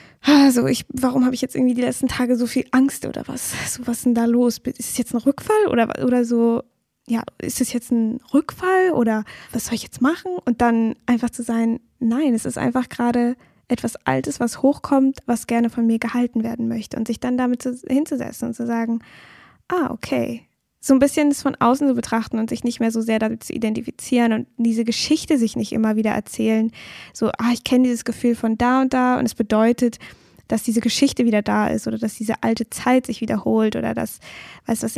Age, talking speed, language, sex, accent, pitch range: 10-29, 215 wpm, German, female, German, 225-255 Hz